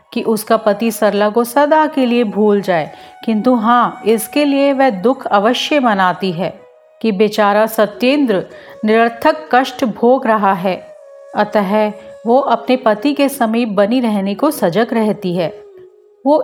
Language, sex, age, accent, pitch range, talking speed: Hindi, female, 40-59, native, 205-270 Hz, 145 wpm